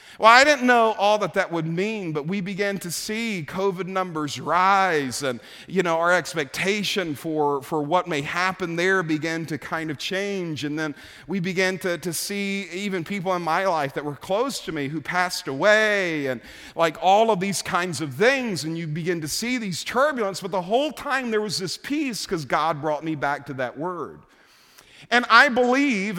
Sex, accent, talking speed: male, American, 200 wpm